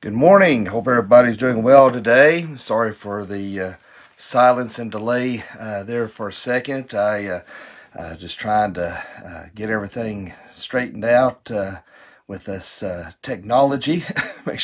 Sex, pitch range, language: male, 100-125 Hz, English